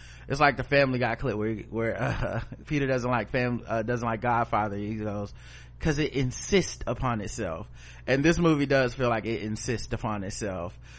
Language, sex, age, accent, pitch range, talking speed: English, male, 30-49, American, 110-135 Hz, 185 wpm